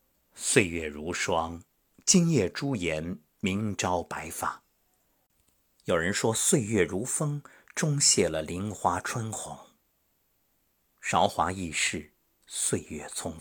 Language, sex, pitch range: Chinese, male, 85-140 Hz